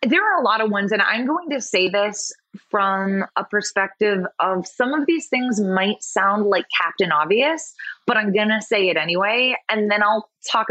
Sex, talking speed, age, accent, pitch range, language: female, 200 wpm, 20-39, American, 180-235 Hz, English